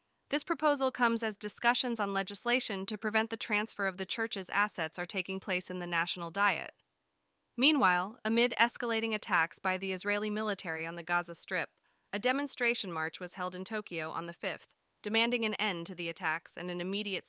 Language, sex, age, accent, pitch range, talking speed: English, female, 20-39, American, 175-220 Hz, 185 wpm